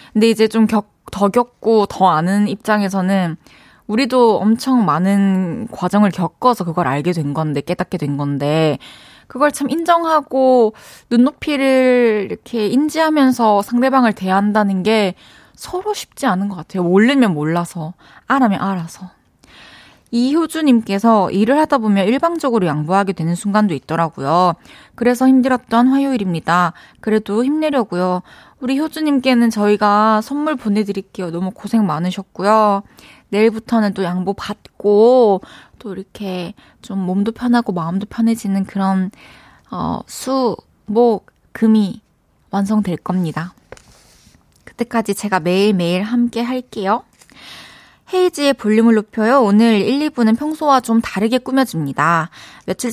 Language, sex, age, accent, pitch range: Korean, female, 20-39, native, 190-250 Hz